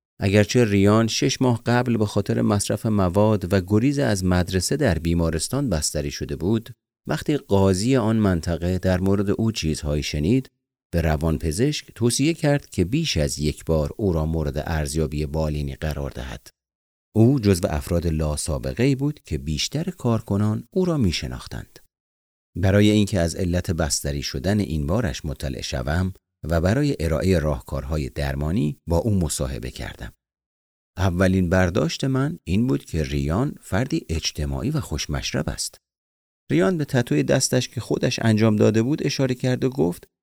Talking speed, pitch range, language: 145 wpm, 75-120 Hz, Persian